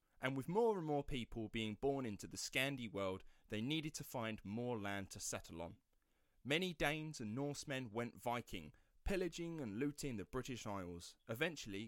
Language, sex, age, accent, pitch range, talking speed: English, male, 30-49, British, 105-145 Hz, 170 wpm